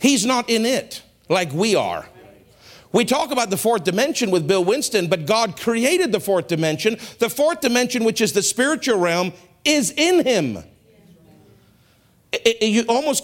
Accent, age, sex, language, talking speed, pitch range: American, 50-69, male, English, 160 wpm, 160-225 Hz